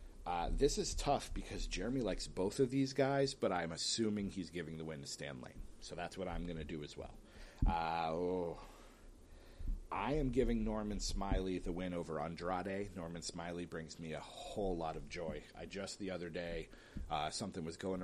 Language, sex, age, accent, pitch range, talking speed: English, male, 40-59, American, 80-105 Hz, 195 wpm